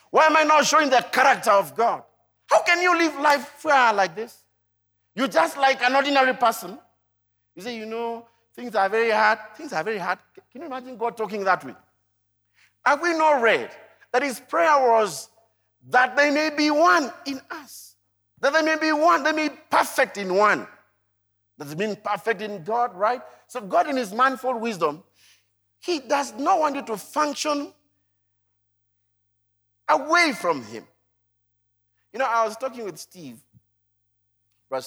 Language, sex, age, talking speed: English, male, 50-69, 170 wpm